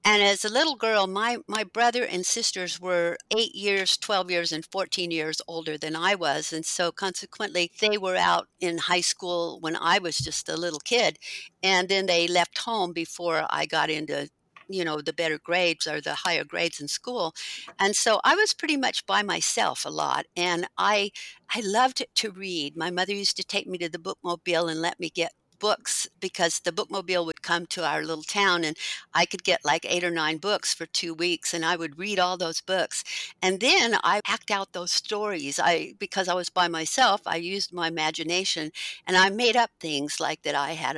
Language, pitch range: English, 165-200 Hz